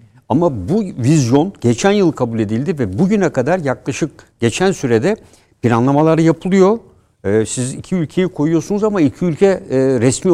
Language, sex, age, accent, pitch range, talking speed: Turkish, male, 60-79, native, 120-175 Hz, 135 wpm